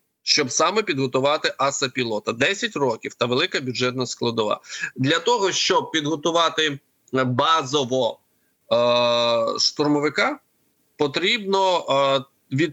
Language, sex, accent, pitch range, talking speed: Ukrainian, male, native, 130-160 Hz, 95 wpm